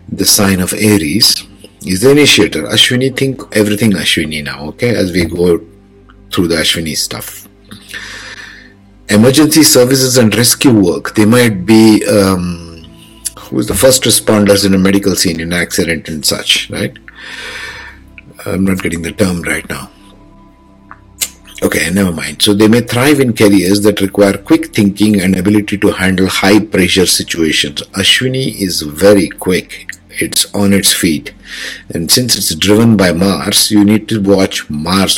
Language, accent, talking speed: English, Indian, 150 wpm